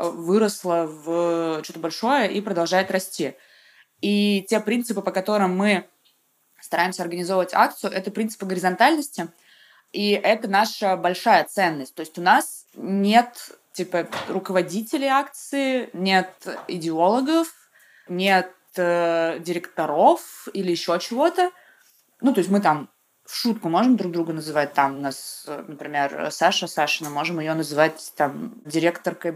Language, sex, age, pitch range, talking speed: Russian, female, 20-39, 170-210 Hz, 125 wpm